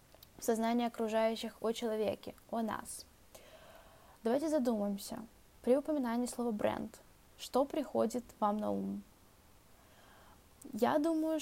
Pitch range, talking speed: 215-255 Hz, 100 wpm